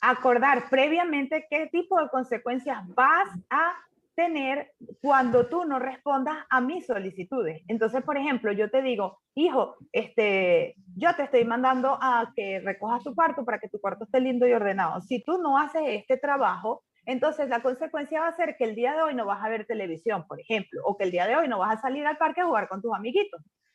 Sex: female